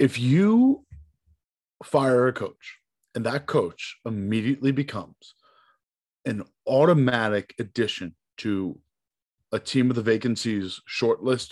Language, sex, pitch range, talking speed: English, male, 100-130 Hz, 105 wpm